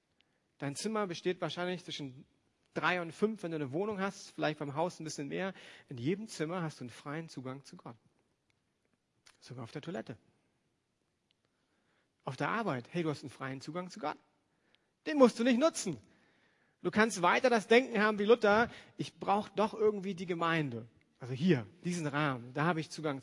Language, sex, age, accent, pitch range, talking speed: German, male, 40-59, German, 140-185 Hz, 185 wpm